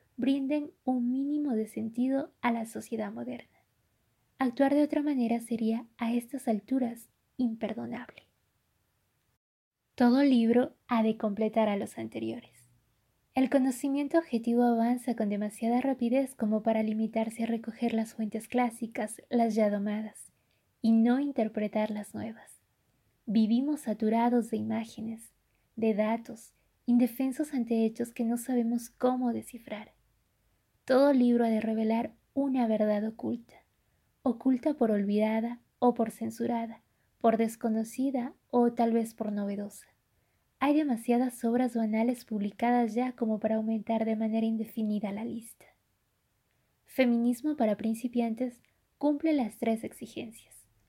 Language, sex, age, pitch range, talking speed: Spanish, female, 20-39, 215-245 Hz, 125 wpm